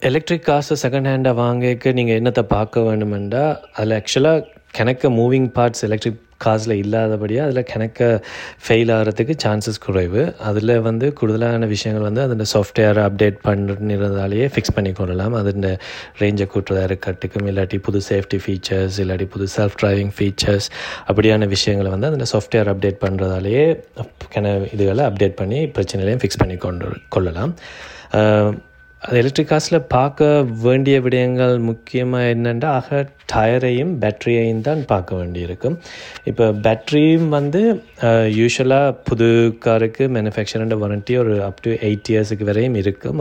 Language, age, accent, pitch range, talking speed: Tamil, 20-39, native, 100-125 Hz, 125 wpm